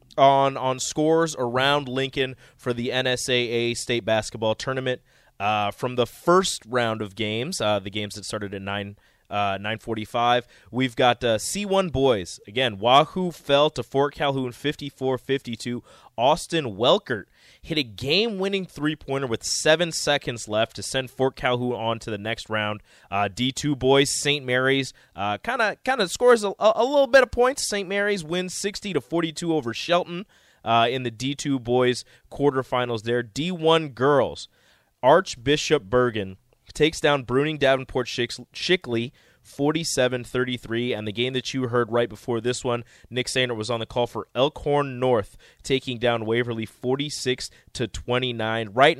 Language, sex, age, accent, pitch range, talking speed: English, male, 20-39, American, 115-145 Hz, 160 wpm